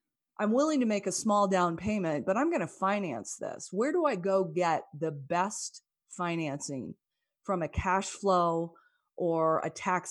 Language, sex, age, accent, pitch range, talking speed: English, female, 30-49, American, 165-200 Hz, 170 wpm